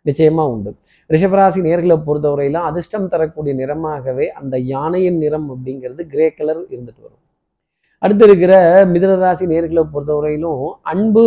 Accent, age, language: native, 20-39, Tamil